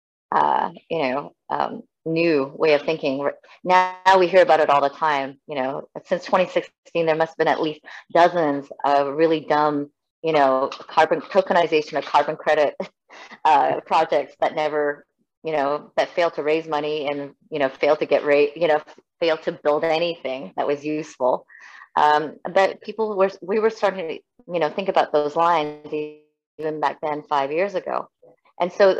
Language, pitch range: Indonesian, 145-170 Hz